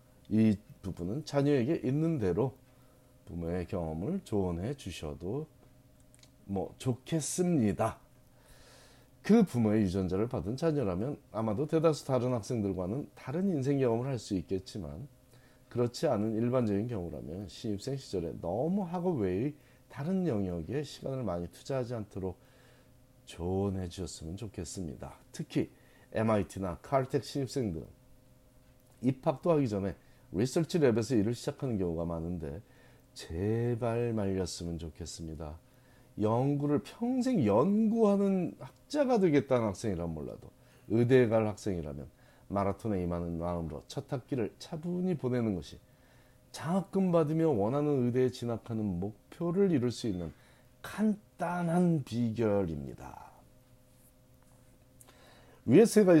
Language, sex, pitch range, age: Korean, male, 100-140 Hz, 40-59